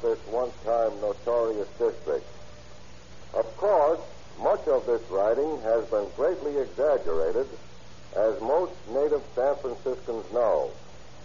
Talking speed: 105 wpm